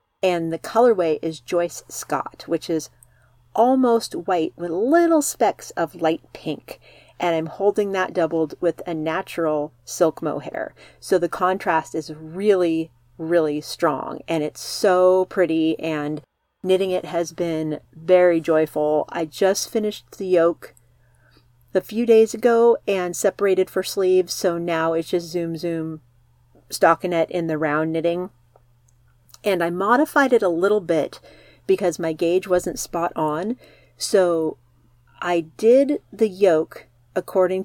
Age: 40-59